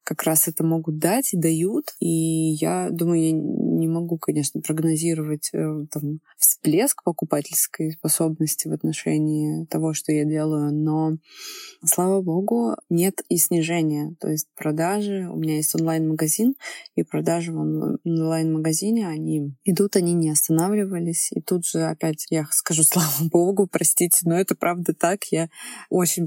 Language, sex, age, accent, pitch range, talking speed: Russian, female, 20-39, native, 160-185 Hz, 140 wpm